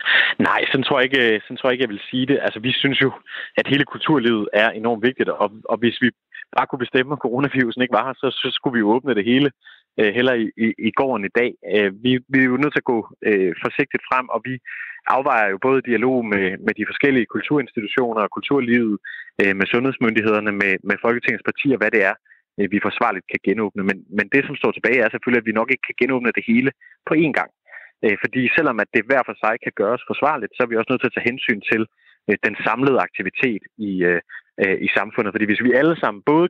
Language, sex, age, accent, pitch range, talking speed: Danish, male, 30-49, native, 105-130 Hz, 235 wpm